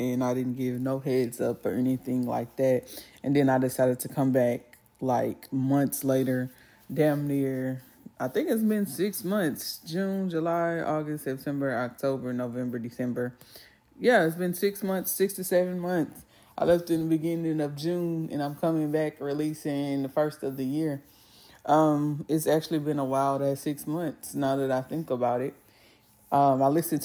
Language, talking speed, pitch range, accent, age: English, 175 wpm, 130-155 Hz, American, 20-39